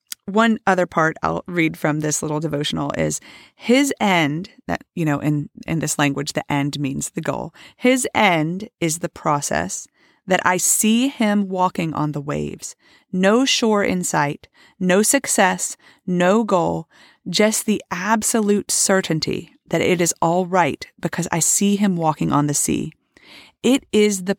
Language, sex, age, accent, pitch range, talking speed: English, female, 30-49, American, 165-215 Hz, 160 wpm